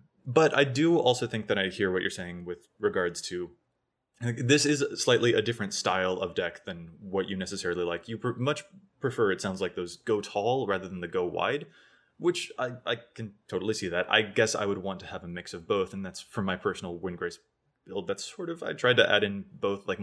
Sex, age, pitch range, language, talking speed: male, 20-39, 95-130 Hz, English, 235 wpm